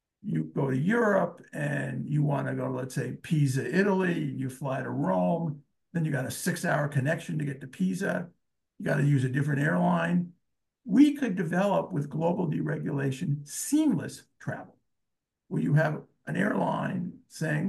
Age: 50-69